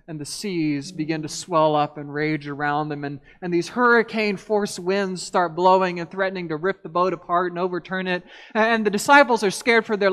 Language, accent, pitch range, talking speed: English, American, 160-225 Hz, 205 wpm